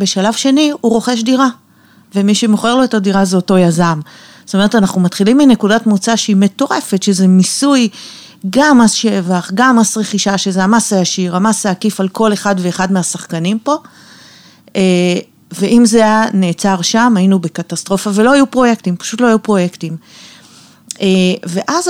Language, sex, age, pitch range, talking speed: Hebrew, female, 40-59, 185-220 Hz, 150 wpm